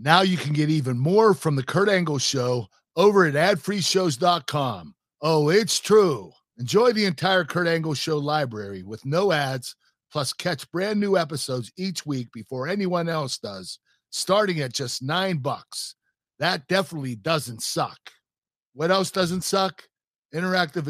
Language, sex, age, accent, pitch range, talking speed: English, male, 50-69, American, 135-185 Hz, 150 wpm